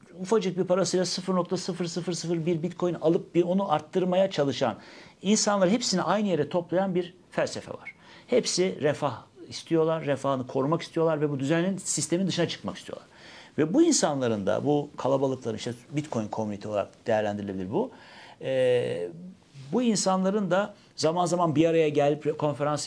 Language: Turkish